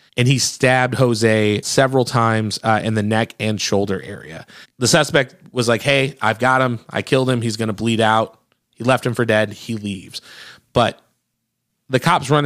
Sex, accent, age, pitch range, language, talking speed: male, American, 30-49, 110-130 Hz, English, 195 wpm